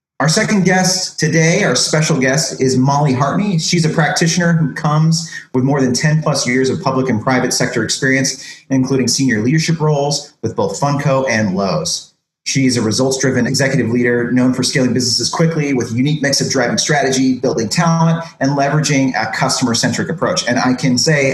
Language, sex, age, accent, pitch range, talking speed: English, male, 30-49, American, 125-170 Hz, 180 wpm